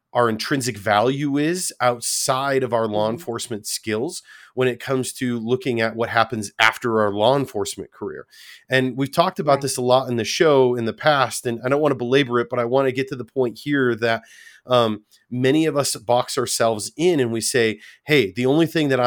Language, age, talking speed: English, 30-49, 215 wpm